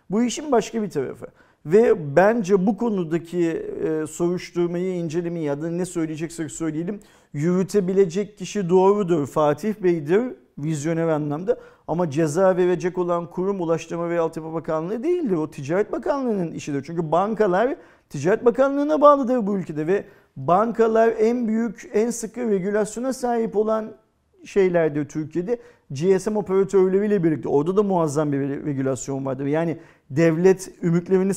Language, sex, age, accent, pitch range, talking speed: Turkish, male, 50-69, native, 170-210 Hz, 130 wpm